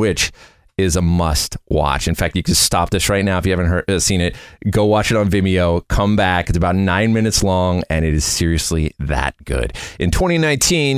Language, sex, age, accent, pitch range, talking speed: English, male, 30-49, American, 90-115 Hz, 220 wpm